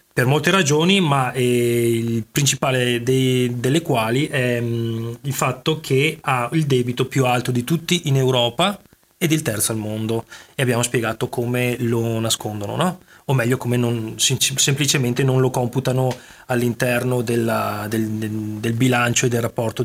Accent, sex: native, male